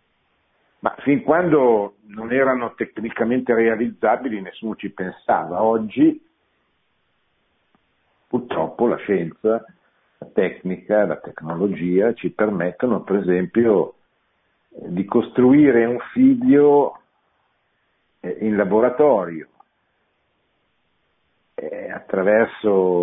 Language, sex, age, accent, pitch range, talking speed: Italian, male, 50-69, native, 90-130 Hz, 75 wpm